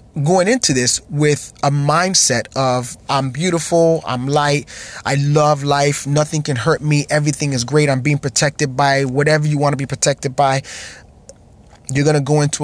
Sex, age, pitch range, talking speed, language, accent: male, 20-39, 120-150 Hz, 175 wpm, English, American